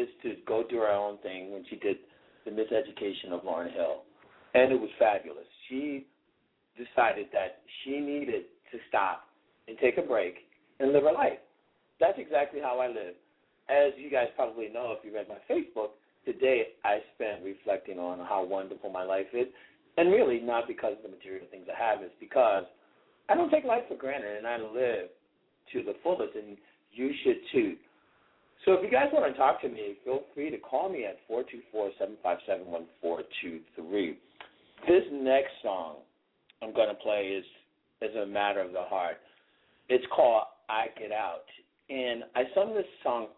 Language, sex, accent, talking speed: English, male, American, 170 wpm